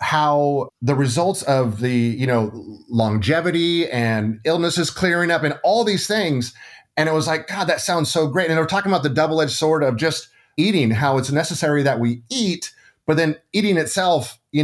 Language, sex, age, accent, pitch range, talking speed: English, male, 30-49, American, 125-160 Hz, 195 wpm